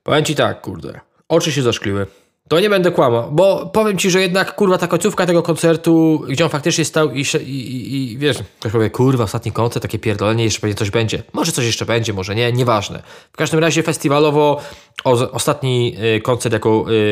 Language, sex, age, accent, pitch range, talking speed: Polish, male, 20-39, native, 115-150 Hz, 200 wpm